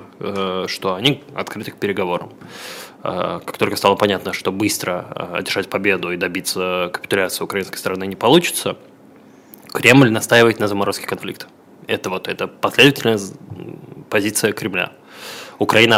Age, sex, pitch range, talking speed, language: 20-39, male, 95-115 Hz, 115 wpm, Russian